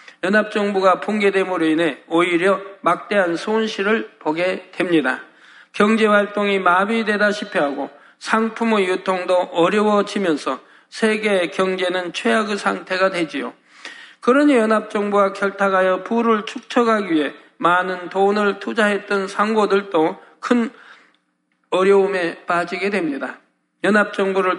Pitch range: 185-215 Hz